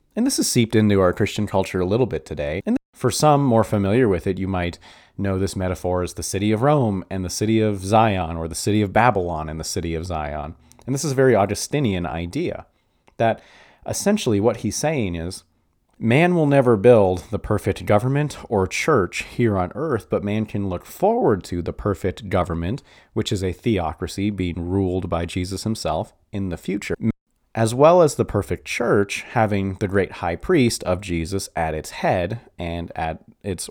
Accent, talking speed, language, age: American, 195 wpm, English, 30-49